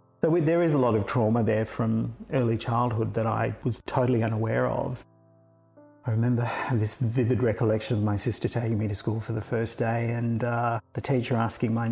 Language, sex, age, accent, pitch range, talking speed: English, male, 40-59, Australian, 115-130 Hz, 200 wpm